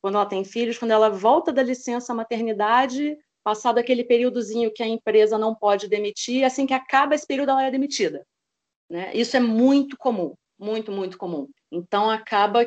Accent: Brazilian